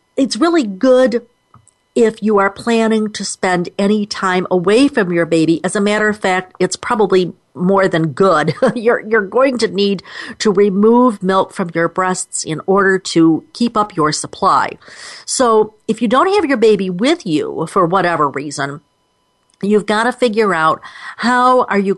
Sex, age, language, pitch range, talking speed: female, 50-69, English, 175-235 Hz, 170 wpm